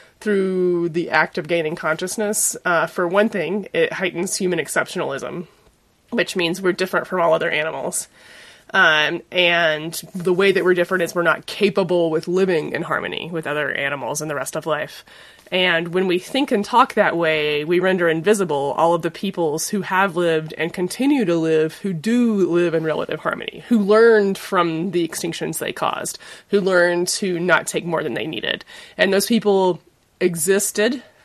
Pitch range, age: 165-205 Hz, 20-39